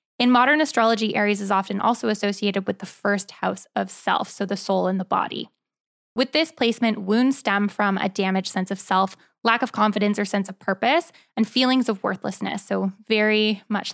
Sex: female